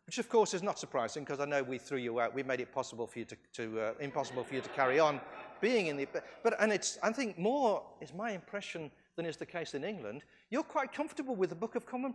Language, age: English, 40-59